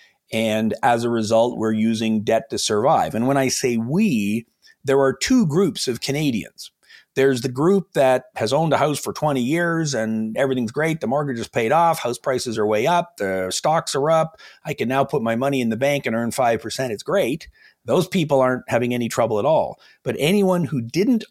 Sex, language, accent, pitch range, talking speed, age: male, English, American, 110-140 Hz, 210 wpm, 40-59